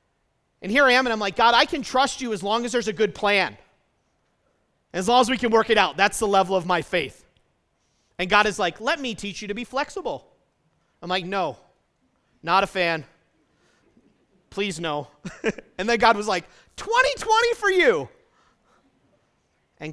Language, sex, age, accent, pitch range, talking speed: English, male, 40-59, American, 175-235 Hz, 185 wpm